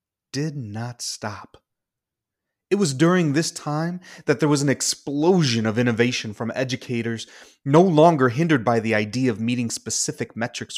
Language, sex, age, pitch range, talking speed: English, male, 30-49, 120-155 Hz, 150 wpm